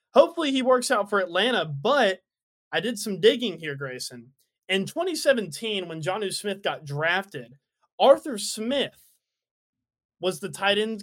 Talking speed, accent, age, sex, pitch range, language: 145 wpm, American, 20-39, male, 170-235 Hz, English